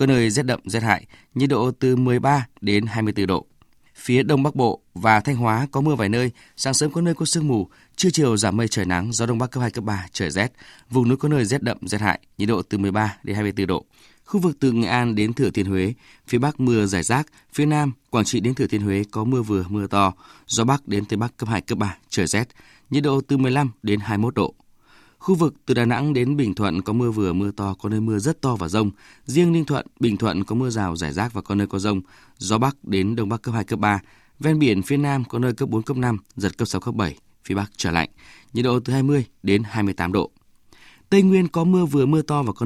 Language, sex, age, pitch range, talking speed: Vietnamese, male, 20-39, 105-135 Hz, 260 wpm